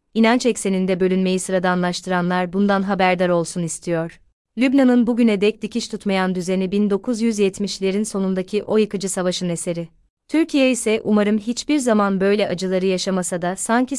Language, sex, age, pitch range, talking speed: Turkish, female, 30-49, 185-215 Hz, 130 wpm